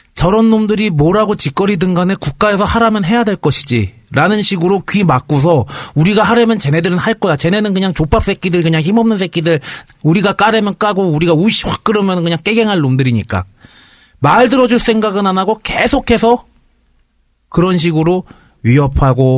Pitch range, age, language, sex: 115-185 Hz, 40-59, Korean, male